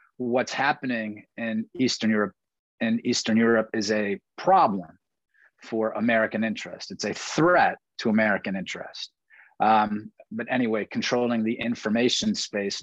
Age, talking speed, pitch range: 30-49, 125 wpm, 110-135 Hz